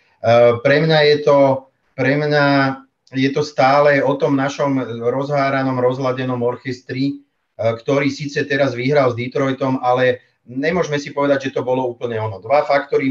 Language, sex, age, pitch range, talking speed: Czech, male, 40-59, 120-140 Hz, 155 wpm